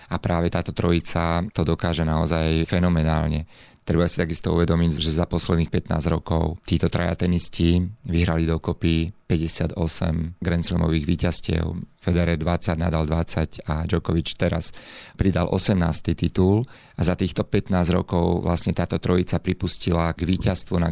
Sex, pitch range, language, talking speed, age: male, 80-90 Hz, Slovak, 130 wpm, 30-49